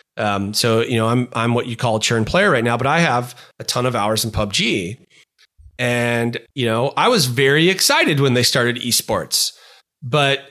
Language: English